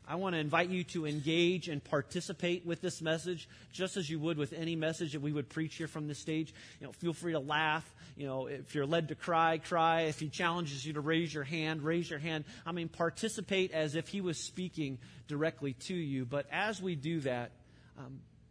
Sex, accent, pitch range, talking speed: male, American, 130-165 Hz, 225 wpm